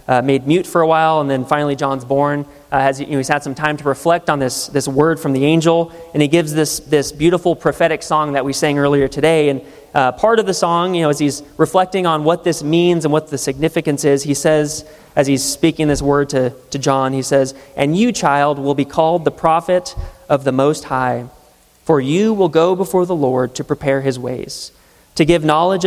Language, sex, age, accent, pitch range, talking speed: English, male, 30-49, American, 140-170 Hz, 230 wpm